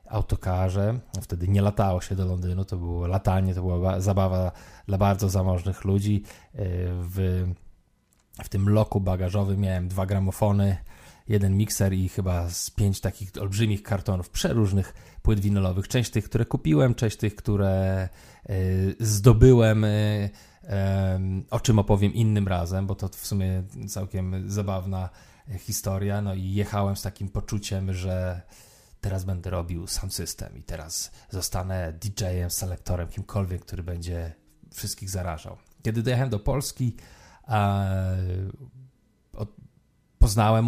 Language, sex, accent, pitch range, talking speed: Polish, male, native, 95-105 Hz, 125 wpm